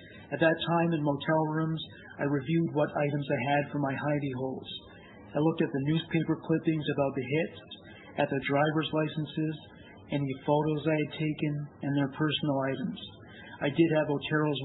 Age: 40-59